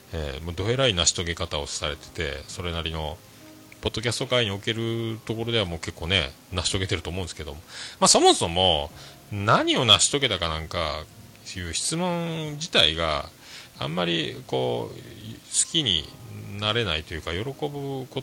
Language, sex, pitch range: Japanese, male, 90-125 Hz